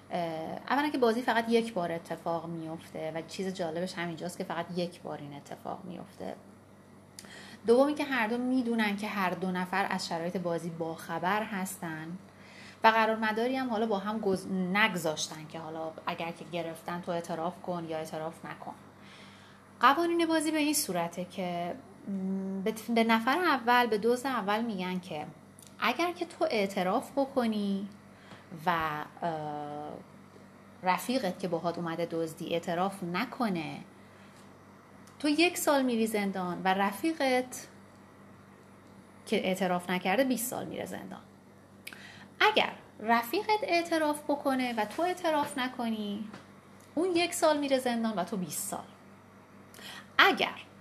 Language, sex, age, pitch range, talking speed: Persian, female, 30-49, 170-245 Hz, 135 wpm